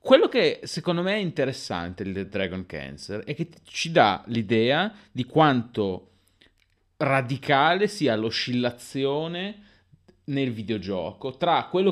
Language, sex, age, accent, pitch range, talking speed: Italian, male, 30-49, native, 100-150 Hz, 115 wpm